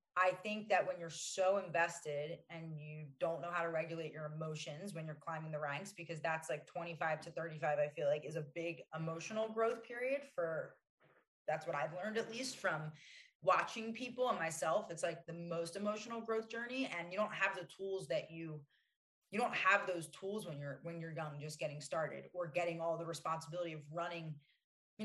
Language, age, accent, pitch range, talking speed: English, 20-39, American, 160-200 Hz, 200 wpm